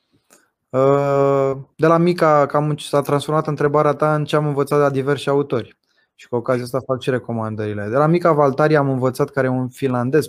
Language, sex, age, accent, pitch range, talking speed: Romanian, male, 20-39, native, 125-150 Hz, 190 wpm